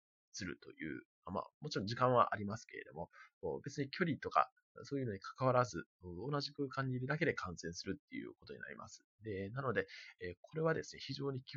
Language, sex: Japanese, male